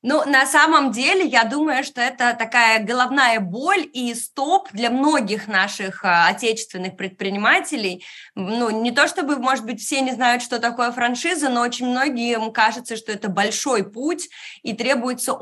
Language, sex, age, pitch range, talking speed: Russian, female, 20-39, 205-260 Hz, 155 wpm